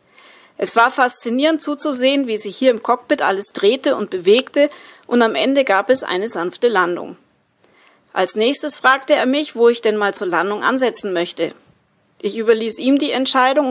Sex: female